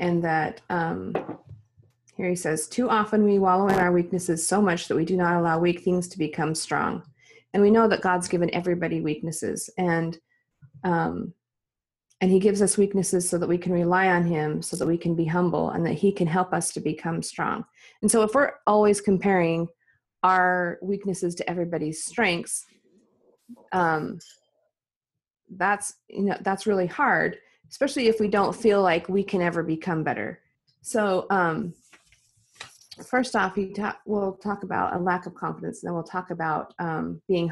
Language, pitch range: English, 170-200 Hz